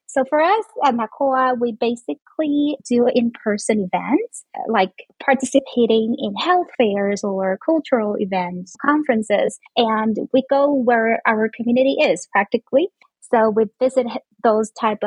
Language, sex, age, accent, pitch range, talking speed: English, female, 20-39, American, 205-255 Hz, 125 wpm